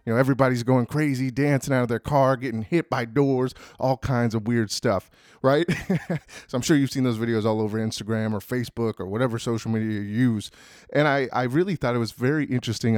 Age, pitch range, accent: 30-49, 115-140 Hz, American